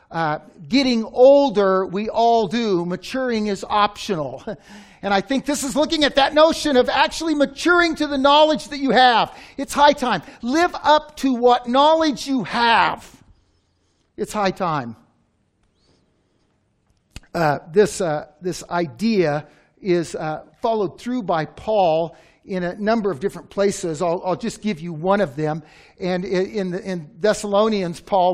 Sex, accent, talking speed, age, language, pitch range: male, American, 155 wpm, 50-69, English, 185-290 Hz